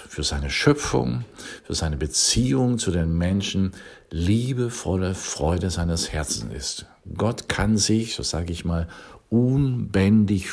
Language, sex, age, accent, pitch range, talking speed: German, male, 50-69, German, 85-115 Hz, 125 wpm